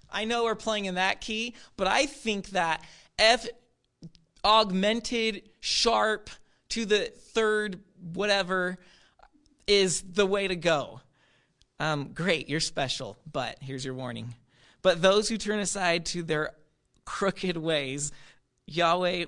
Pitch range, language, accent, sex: 135-190 Hz, English, American, male